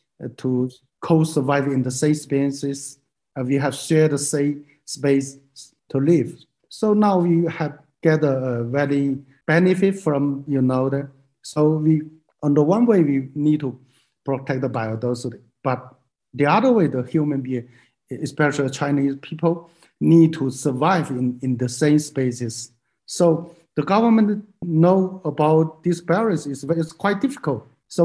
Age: 50-69